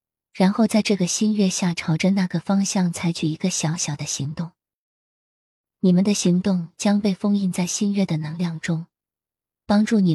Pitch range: 165-200 Hz